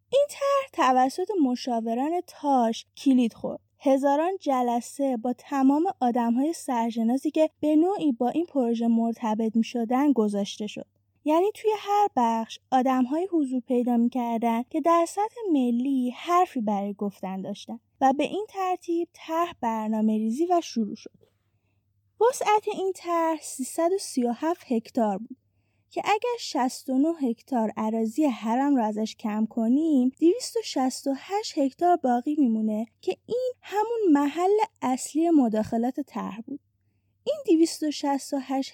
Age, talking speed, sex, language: 20-39, 125 wpm, female, Persian